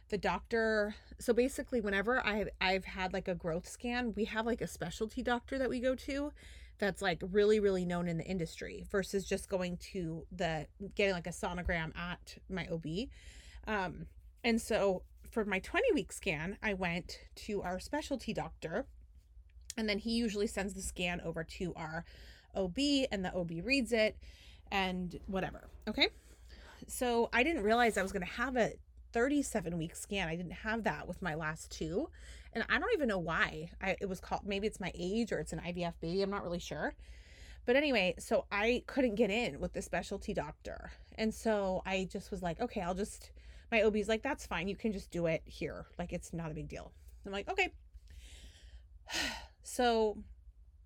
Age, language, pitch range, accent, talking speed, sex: 30-49, English, 175-220 Hz, American, 190 wpm, female